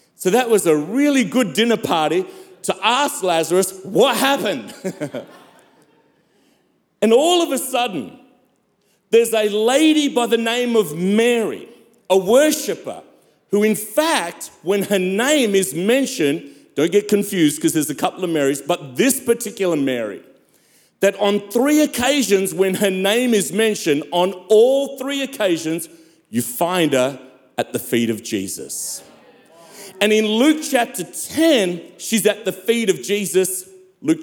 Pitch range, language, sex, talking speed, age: 170-245 Hz, English, male, 145 wpm, 40-59